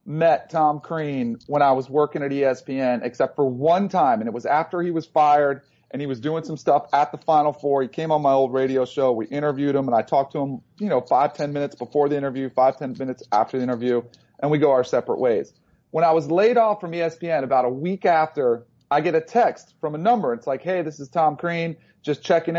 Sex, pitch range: male, 135-175 Hz